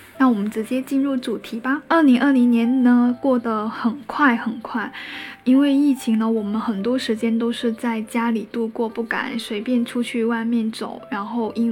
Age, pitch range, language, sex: 10-29, 230-270 Hz, Chinese, female